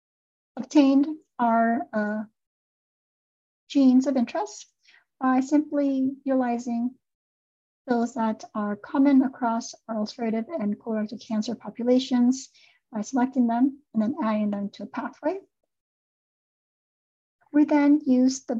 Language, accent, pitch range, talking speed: English, American, 225-275 Hz, 105 wpm